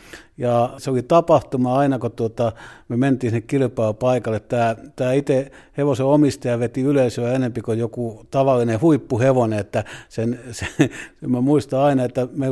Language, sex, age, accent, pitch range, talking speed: Finnish, male, 50-69, native, 120-145 Hz, 150 wpm